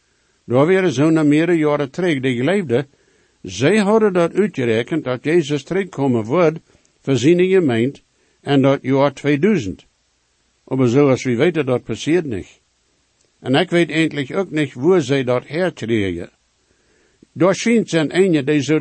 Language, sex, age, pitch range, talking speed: English, male, 60-79, 125-175 Hz, 145 wpm